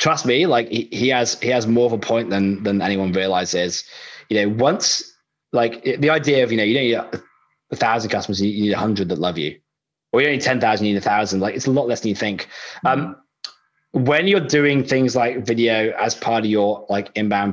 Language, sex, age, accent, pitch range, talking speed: English, male, 20-39, British, 105-130 Hz, 230 wpm